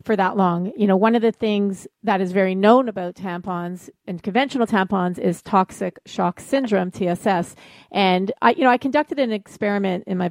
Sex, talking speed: female, 190 wpm